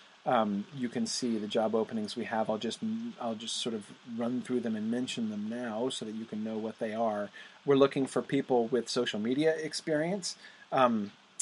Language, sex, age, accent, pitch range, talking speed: English, male, 40-59, American, 125-160 Hz, 205 wpm